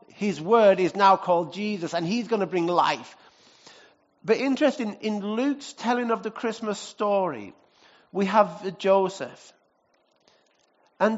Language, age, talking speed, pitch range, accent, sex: English, 50-69, 135 wpm, 185-230 Hz, British, male